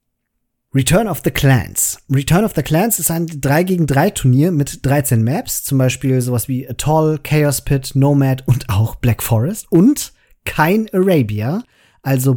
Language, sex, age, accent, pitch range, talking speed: German, male, 40-59, German, 135-165 Hz, 160 wpm